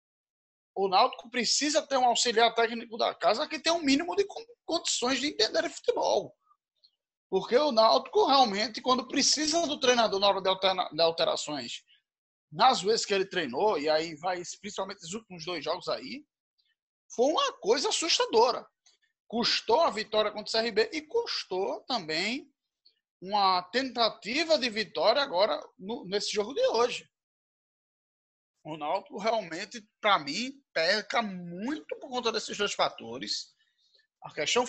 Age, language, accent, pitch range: 20-39, Portuguese, Brazilian, 190-275 Hz